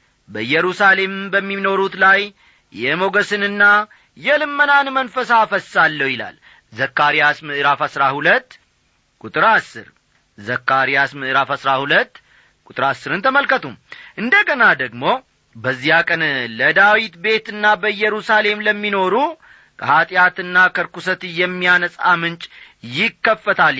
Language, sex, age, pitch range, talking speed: Amharic, male, 40-59, 145-200 Hz, 80 wpm